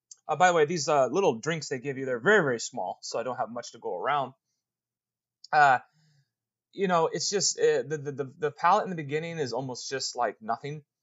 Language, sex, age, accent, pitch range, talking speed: English, male, 30-49, American, 135-195 Hz, 230 wpm